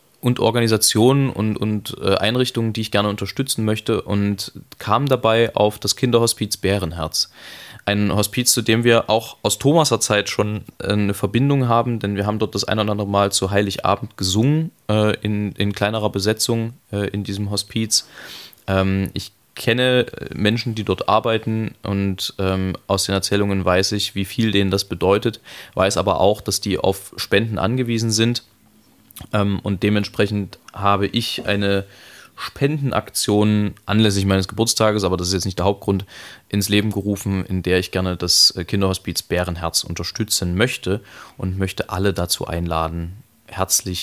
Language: German